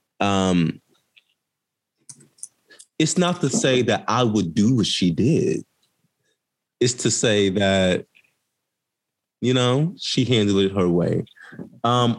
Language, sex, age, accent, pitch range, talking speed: English, male, 20-39, American, 95-130 Hz, 120 wpm